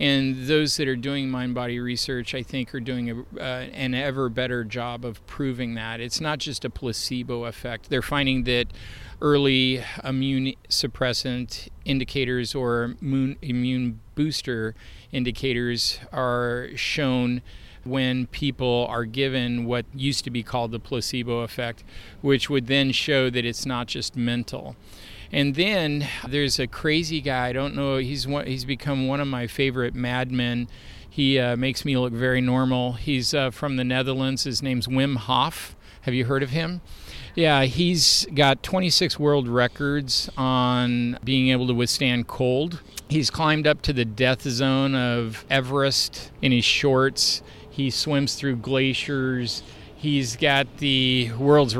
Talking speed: 150 wpm